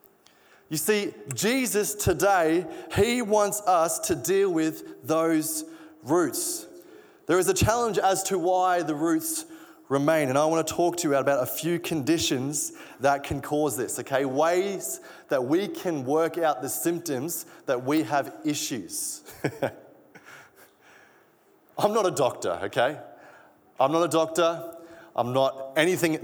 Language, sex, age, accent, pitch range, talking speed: English, male, 30-49, Australian, 135-205 Hz, 140 wpm